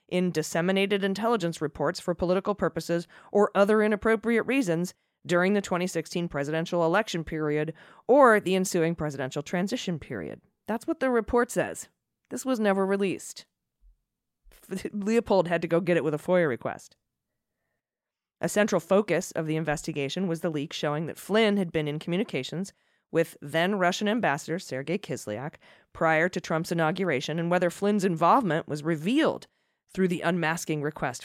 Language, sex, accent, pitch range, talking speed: English, female, American, 155-195 Hz, 150 wpm